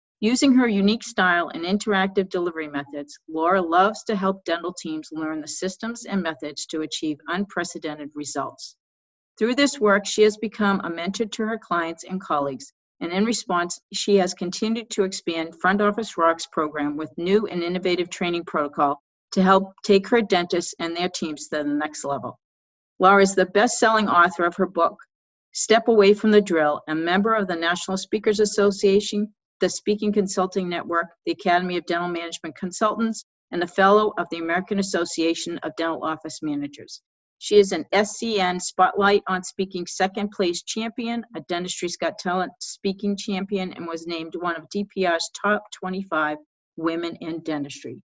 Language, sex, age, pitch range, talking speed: English, female, 50-69, 165-200 Hz, 165 wpm